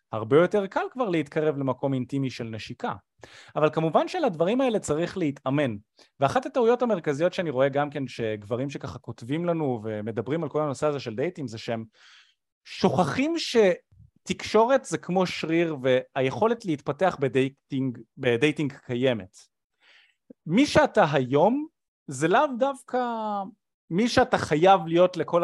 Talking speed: 130 wpm